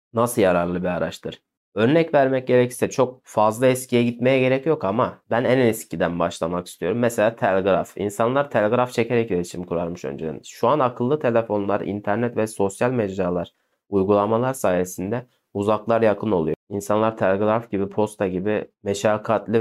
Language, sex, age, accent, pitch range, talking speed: Turkish, male, 30-49, native, 95-115 Hz, 140 wpm